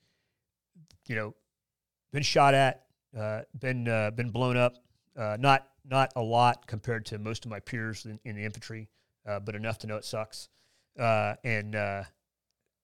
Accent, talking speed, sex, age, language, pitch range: American, 170 wpm, male, 30-49, English, 105-125 Hz